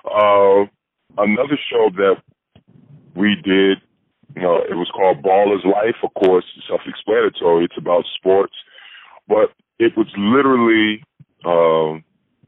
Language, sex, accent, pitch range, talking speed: English, female, American, 100-145 Hz, 120 wpm